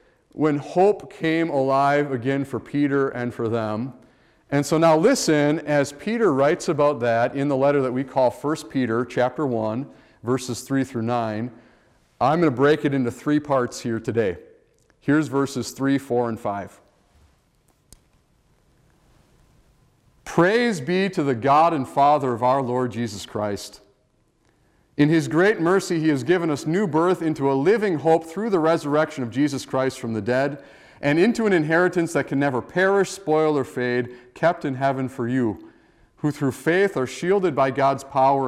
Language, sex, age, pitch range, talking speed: English, male, 40-59, 120-160 Hz, 170 wpm